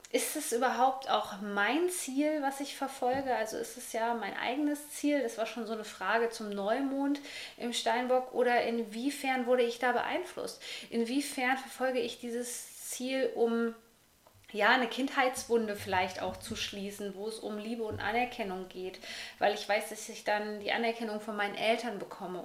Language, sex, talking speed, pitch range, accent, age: German, female, 170 wpm, 220-260 Hz, German, 20-39